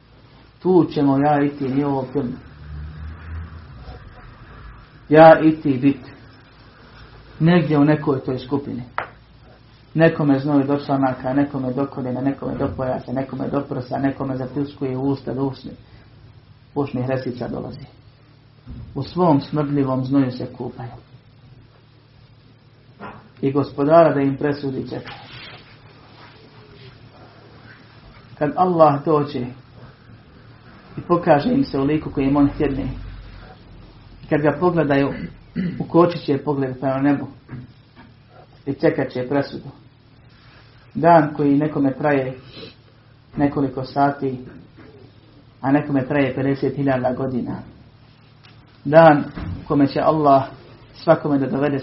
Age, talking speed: 50-69, 110 wpm